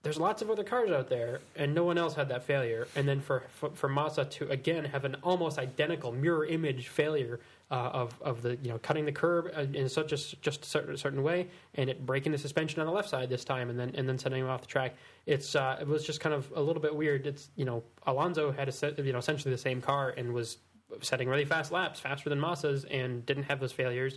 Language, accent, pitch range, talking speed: English, American, 130-150 Hz, 260 wpm